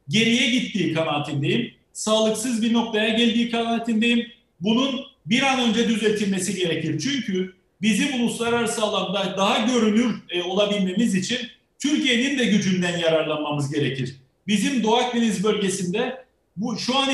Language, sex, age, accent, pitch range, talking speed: Turkish, male, 40-59, native, 200-240 Hz, 120 wpm